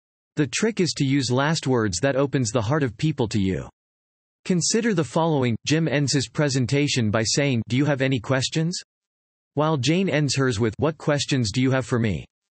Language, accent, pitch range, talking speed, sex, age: English, American, 115-150 Hz, 195 wpm, male, 40-59